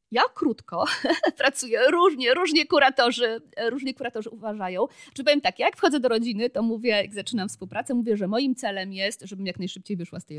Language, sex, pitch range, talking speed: Polish, female, 175-230 Hz, 190 wpm